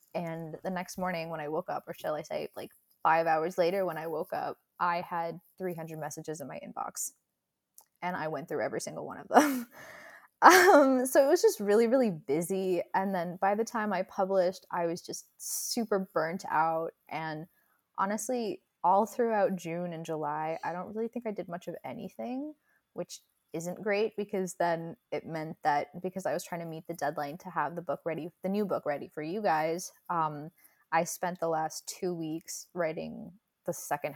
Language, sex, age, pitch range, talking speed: English, female, 20-39, 160-215 Hz, 195 wpm